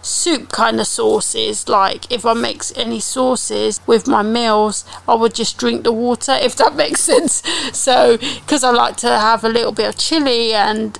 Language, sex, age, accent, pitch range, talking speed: English, female, 30-49, British, 215-250 Hz, 190 wpm